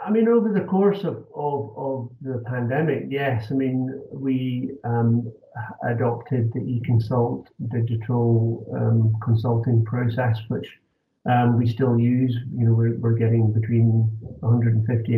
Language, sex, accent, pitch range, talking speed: English, male, British, 115-135 Hz, 135 wpm